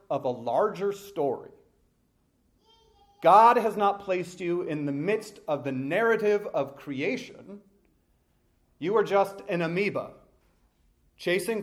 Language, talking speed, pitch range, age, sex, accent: English, 120 wpm, 130-210 Hz, 40-59, male, American